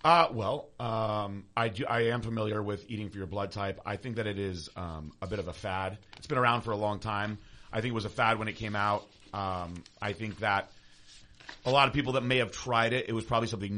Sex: male